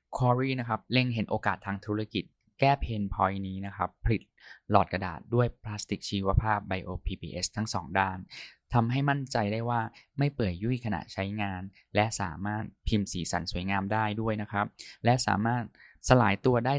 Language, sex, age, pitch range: Thai, male, 20-39, 95-120 Hz